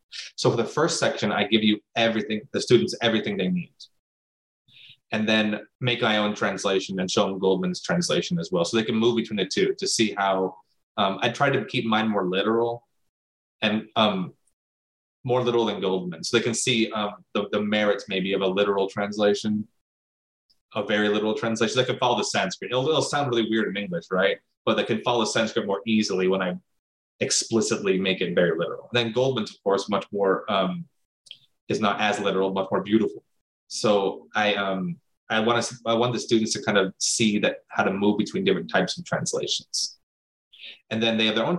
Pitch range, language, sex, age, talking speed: 100-120 Hz, English, male, 20-39, 200 wpm